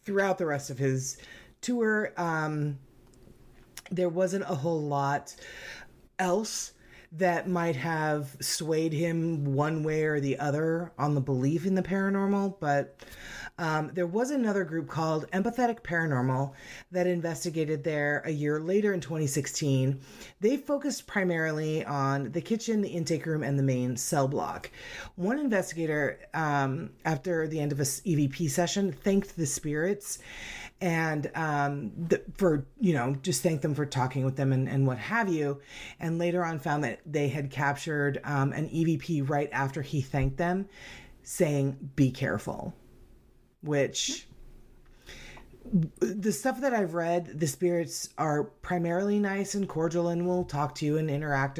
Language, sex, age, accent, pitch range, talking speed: English, female, 30-49, American, 140-180 Hz, 150 wpm